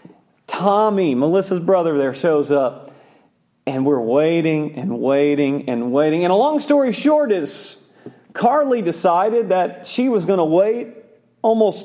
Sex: male